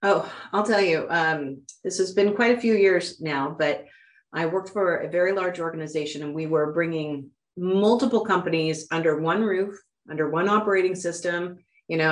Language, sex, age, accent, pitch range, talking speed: English, female, 40-59, American, 160-200 Hz, 180 wpm